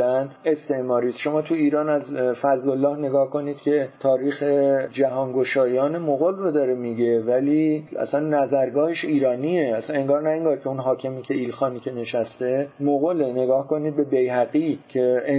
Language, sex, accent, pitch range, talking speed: English, male, Canadian, 125-150 Hz, 150 wpm